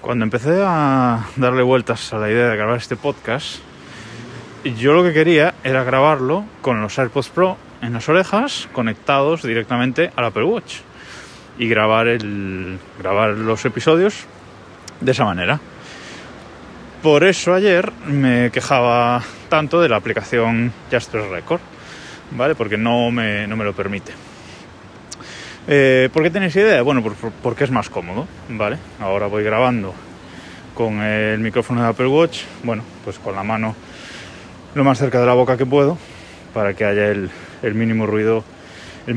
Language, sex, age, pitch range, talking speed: Spanish, male, 20-39, 110-140 Hz, 150 wpm